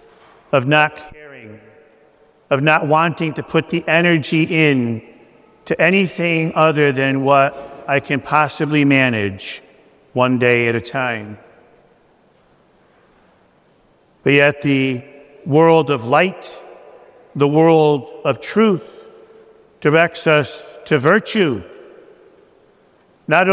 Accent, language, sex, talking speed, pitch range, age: American, English, male, 100 wpm, 145-185 Hz, 50-69